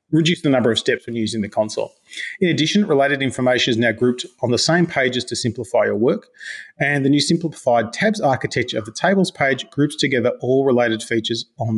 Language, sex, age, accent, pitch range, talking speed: English, male, 30-49, Australian, 115-150 Hz, 205 wpm